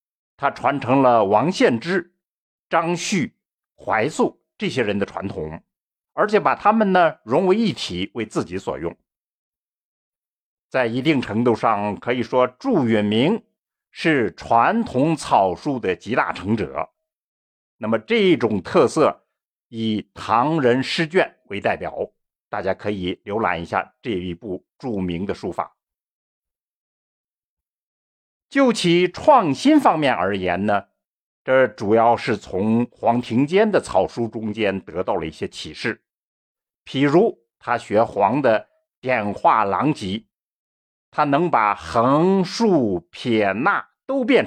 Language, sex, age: Chinese, male, 50-69